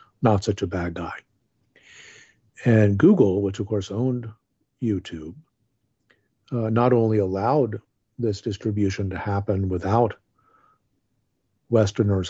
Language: English